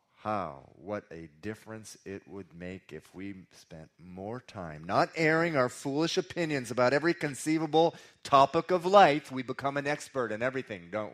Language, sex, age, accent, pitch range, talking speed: English, male, 30-49, American, 100-140 Hz, 160 wpm